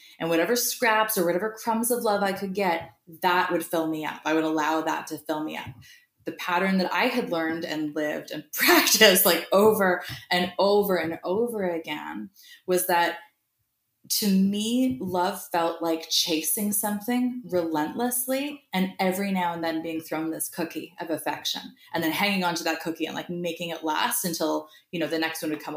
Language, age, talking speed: English, 20-39, 190 wpm